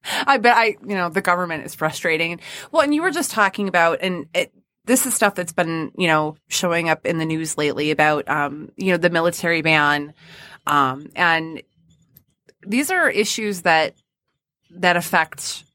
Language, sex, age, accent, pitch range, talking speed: English, female, 20-39, American, 160-200 Hz, 175 wpm